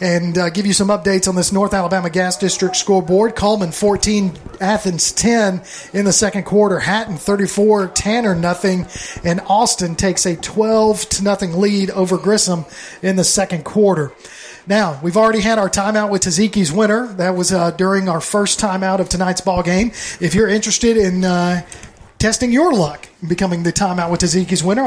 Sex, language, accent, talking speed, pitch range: male, English, American, 180 wpm, 180-215 Hz